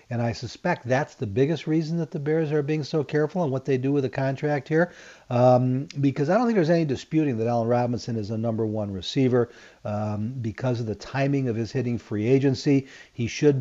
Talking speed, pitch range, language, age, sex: 220 wpm, 120-140 Hz, English, 40-59, male